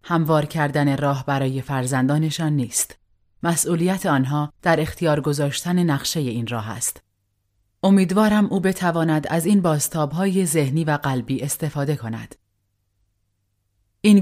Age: 30-49